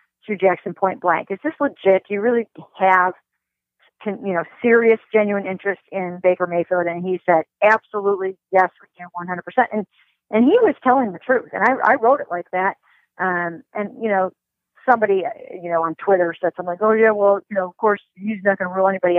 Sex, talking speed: female, 205 wpm